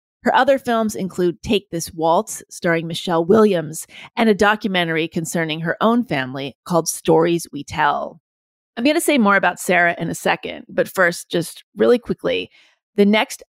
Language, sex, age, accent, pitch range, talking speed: English, female, 30-49, American, 165-210 Hz, 165 wpm